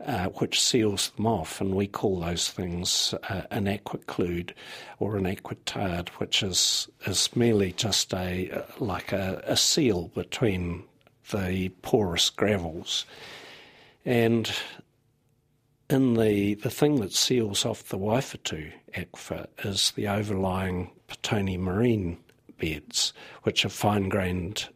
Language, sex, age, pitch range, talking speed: English, male, 50-69, 95-115 Hz, 125 wpm